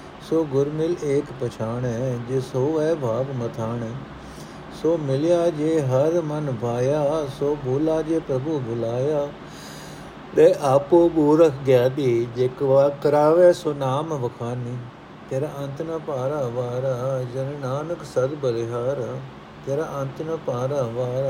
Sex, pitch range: male, 125-150 Hz